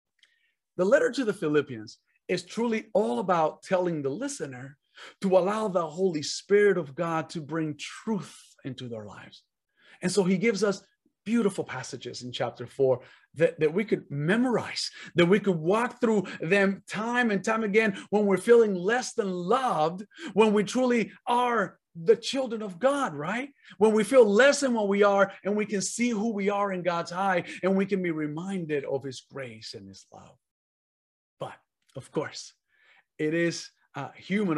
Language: English